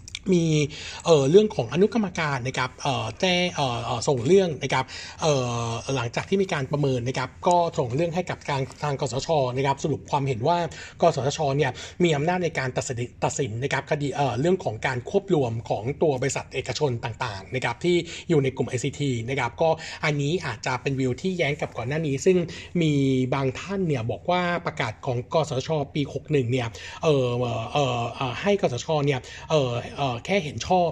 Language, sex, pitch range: Thai, male, 130-165 Hz